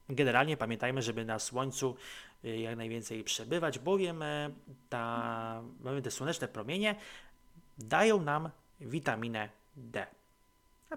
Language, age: Polish, 30-49